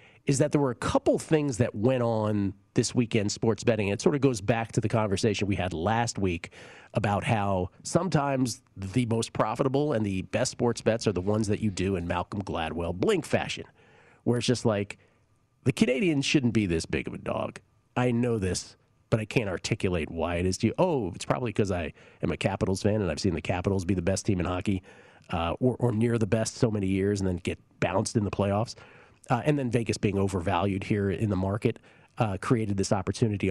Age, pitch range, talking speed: 40-59, 100-130 Hz, 220 wpm